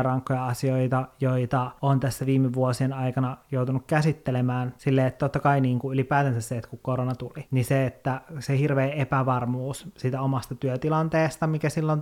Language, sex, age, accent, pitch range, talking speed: Finnish, male, 30-49, native, 130-160 Hz, 165 wpm